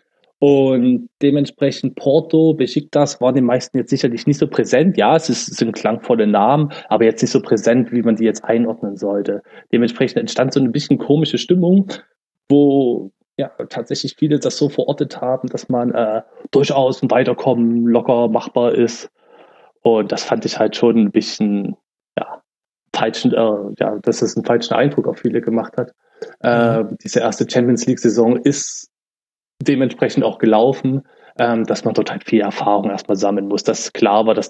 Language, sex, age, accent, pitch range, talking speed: German, male, 20-39, German, 115-135 Hz, 165 wpm